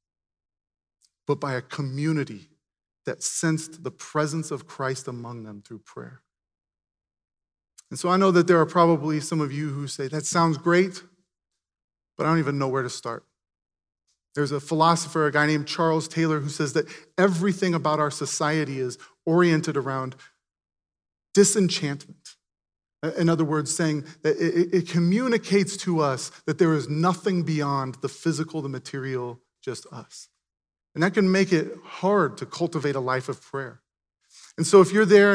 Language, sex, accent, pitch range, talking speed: English, male, American, 135-180 Hz, 160 wpm